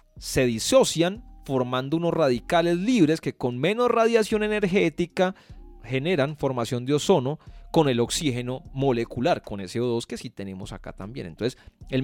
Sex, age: male, 30-49